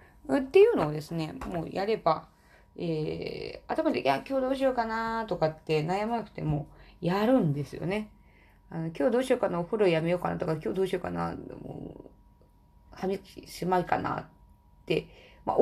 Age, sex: 20-39, female